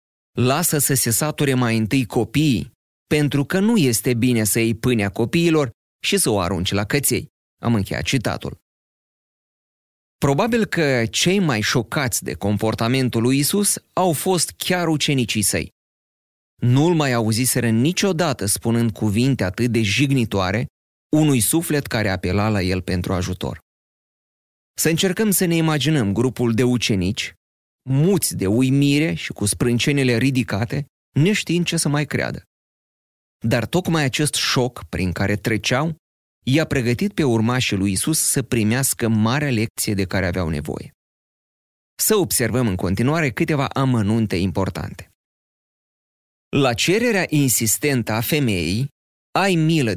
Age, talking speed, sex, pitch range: 30-49, 135 wpm, male, 100-145 Hz